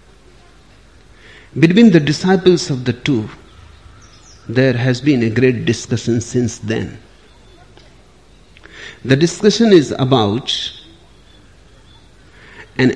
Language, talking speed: English, 90 wpm